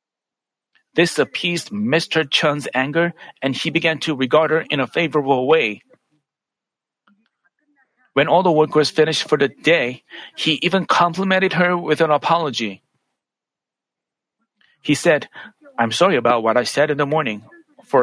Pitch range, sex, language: 145-175 Hz, male, Korean